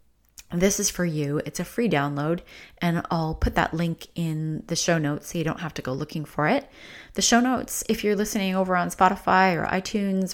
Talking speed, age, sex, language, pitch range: 215 wpm, 30-49, female, English, 170-210 Hz